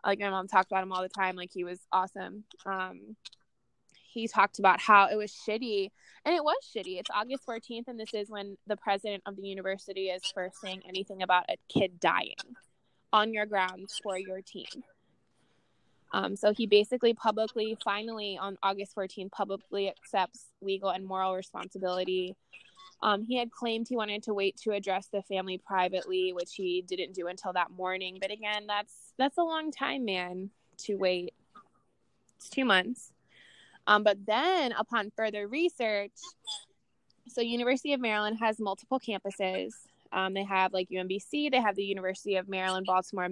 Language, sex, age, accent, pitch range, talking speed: English, female, 20-39, American, 190-220 Hz, 170 wpm